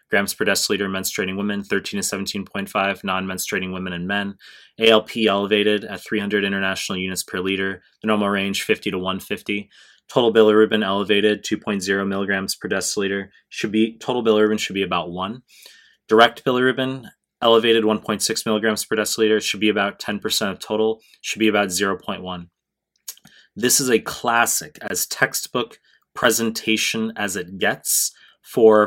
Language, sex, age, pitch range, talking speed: English, male, 20-39, 100-115 Hz, 145 wpm